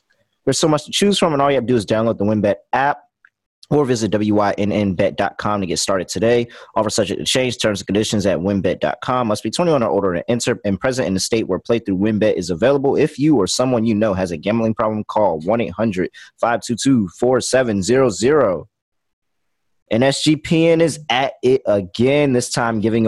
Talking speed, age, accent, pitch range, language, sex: 185 wpm, 20-39, American, 100-130 Hz, English, male